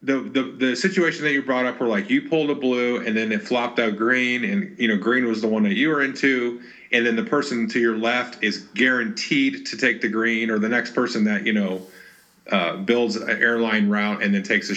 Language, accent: English, American